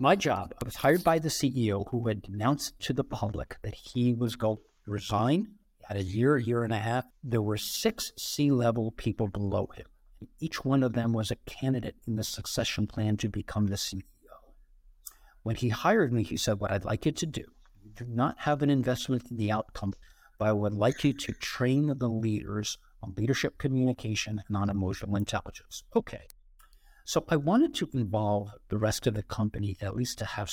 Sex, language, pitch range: male, English, 105-125 Hz